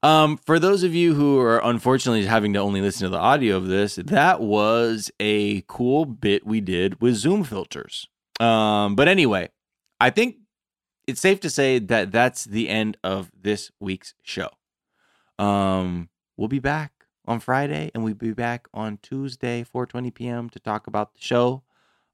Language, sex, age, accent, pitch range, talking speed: English, male, 20-39, American, 100-130 Hz, 170 wpm